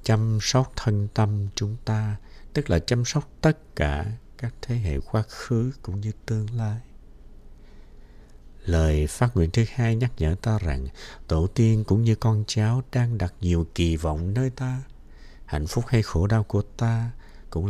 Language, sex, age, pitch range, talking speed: Vietnamese, male, 60-79, 75-110 Hz, 175 wpm